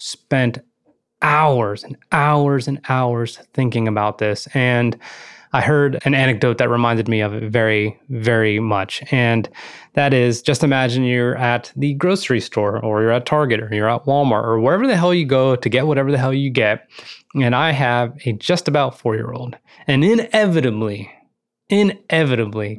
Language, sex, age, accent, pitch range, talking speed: English, male, 20-39, American, 115-150 Hz, 170 wpm